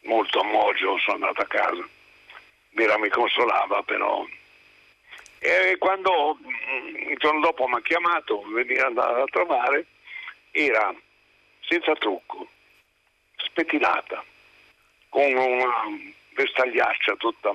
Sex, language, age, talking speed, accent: male, Italian, 60-79, 105 wpm, native